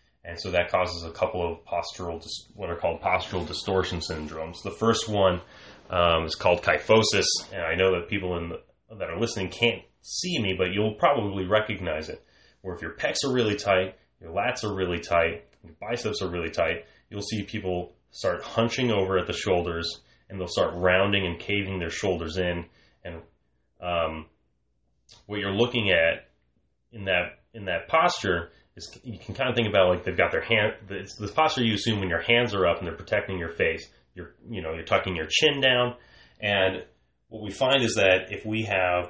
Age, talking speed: 30-49, 200 wpm